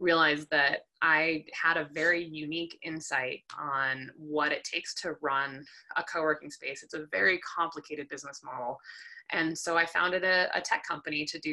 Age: 20-39